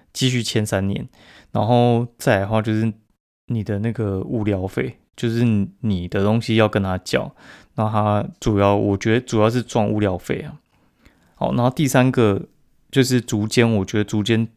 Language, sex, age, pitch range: Chinese, male, 20-39, 100-120 Hz